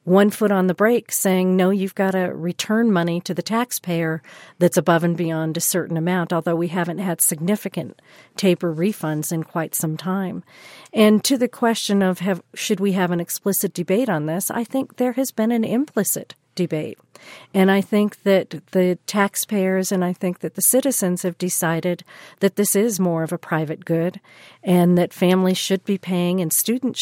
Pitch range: 175-200 Hz